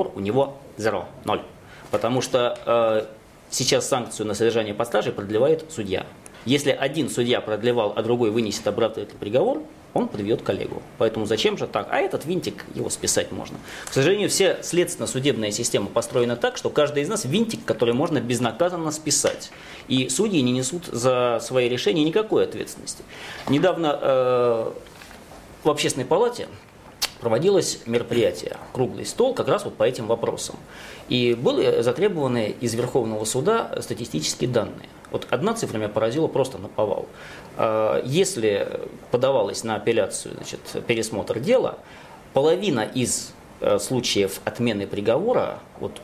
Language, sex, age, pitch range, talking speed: Russian, male, 20-39, 115-175 Hz, 135 wpm